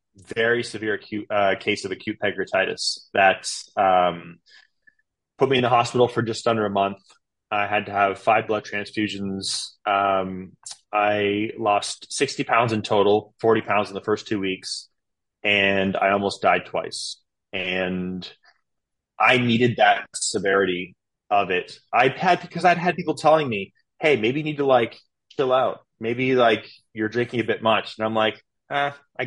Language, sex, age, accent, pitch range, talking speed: English, male, 20-39, American, 100-120 Hz, 165 wpm